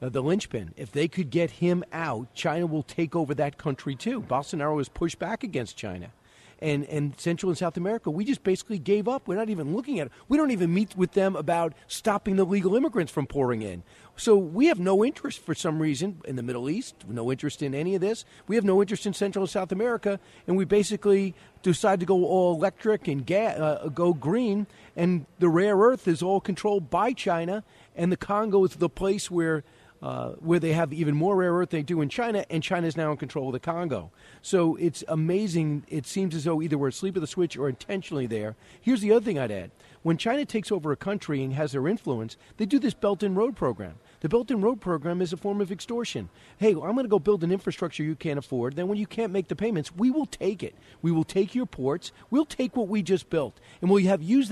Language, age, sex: English, 40-59, male